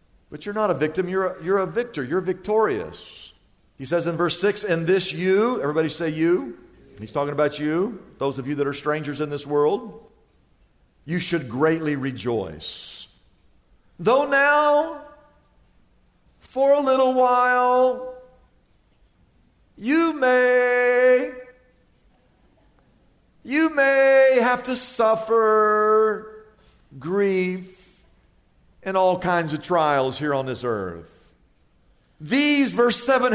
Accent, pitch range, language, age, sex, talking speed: American, 150-245 Hz, English, 50-69, male, 115 wpm